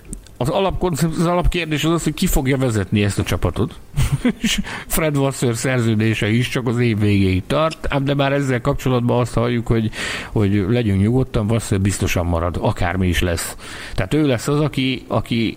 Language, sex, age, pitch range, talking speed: Hungarian, male, 60-79, 95-135 Hz, 175 wpm